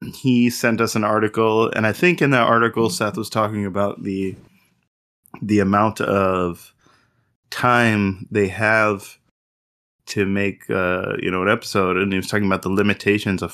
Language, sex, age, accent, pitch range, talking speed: English, male, 20-39, American, 95-115 Hz, 165 wpm